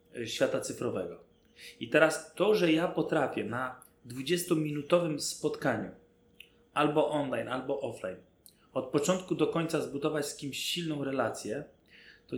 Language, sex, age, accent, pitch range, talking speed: Polish, male, 30-49, native, 135-160 Hz, 120 wpm